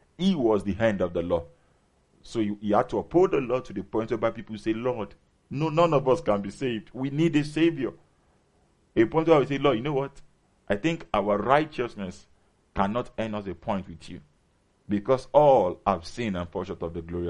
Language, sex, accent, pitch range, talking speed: English, male, Nigerian, 90-125 Hz, 220 wpm